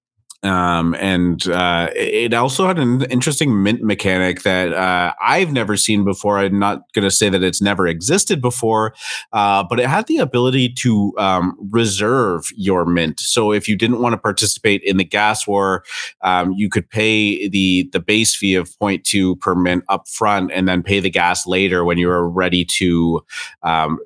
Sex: male